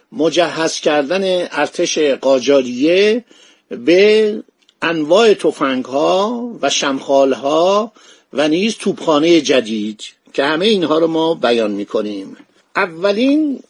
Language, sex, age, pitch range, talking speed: Persian, male, 50-69, 150-205 Hz, 105 wpm